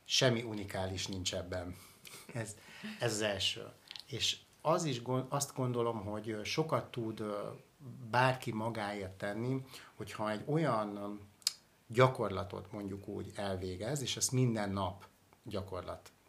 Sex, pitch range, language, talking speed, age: male, 100-125 Hz, Hungarian, 105 wpm, 60-79